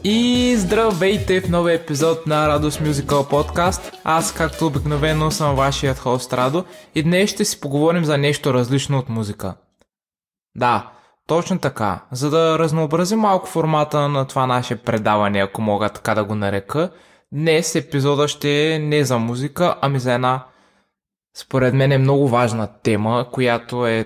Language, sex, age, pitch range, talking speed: Bulgarian, male, 20-39, 115-155 Hz, 155 wpm